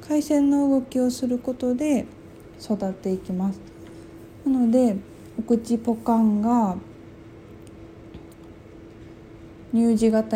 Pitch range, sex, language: 180-245 Hz, female, Japanese